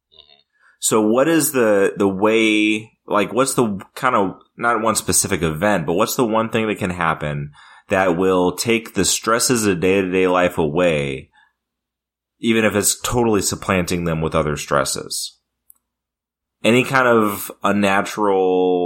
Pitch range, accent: 85-105 Hz, American